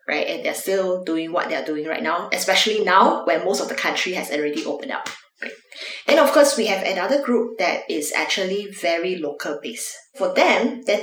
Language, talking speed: English, 205 wpm